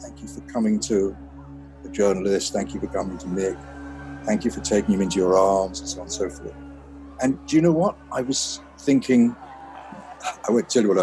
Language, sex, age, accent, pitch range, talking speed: English, male, 60-79, British, 100-145 Hz, 220 wpm